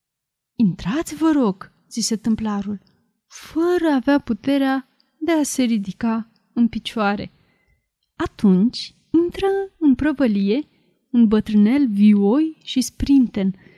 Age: 30-49